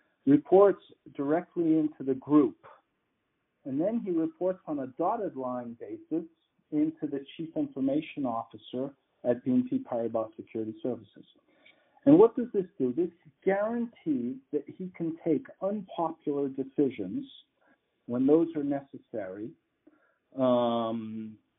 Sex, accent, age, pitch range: male, American, 50-69, 125-210 Hz